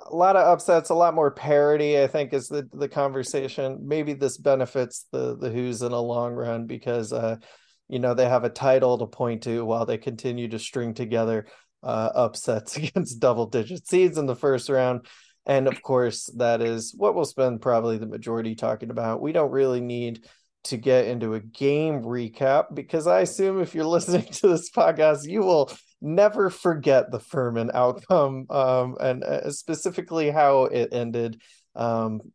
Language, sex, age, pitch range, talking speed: English, male, 20-39, 115-145 Hz, 180 wpm